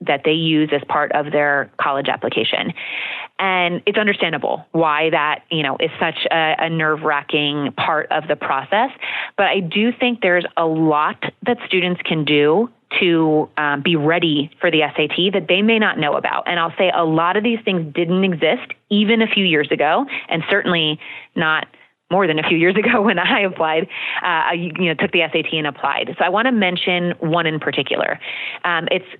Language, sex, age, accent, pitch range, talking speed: English, female, 30-49, American, 155-190 Hz, 195 wpm